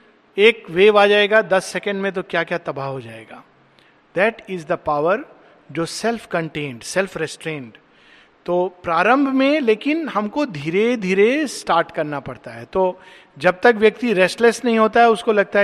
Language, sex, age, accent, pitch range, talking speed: Hindi, male, 50-69, native, 170-225 Hz, 165 wpm